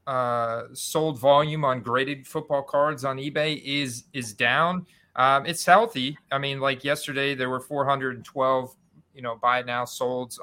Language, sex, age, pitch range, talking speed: English, male, 30-49, 125-145 Hz, 160 wpm